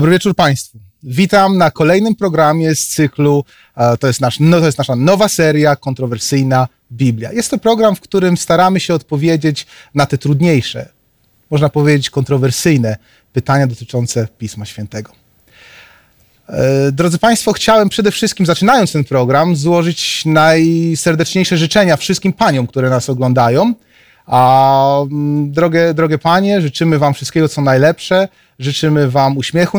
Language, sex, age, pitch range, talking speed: Polish, male, 30-49, 135-180 Hz, 135 wpm